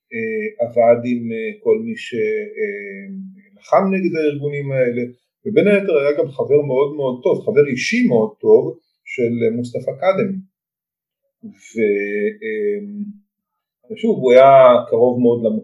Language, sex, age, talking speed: Hebrew, male, 40-59, 105 wpm